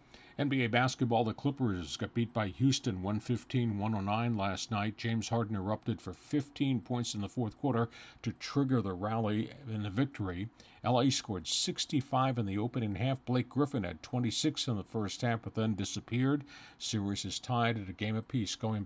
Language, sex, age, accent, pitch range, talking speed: English, male, 50-69, American, 105-125 Hz, 170 wpm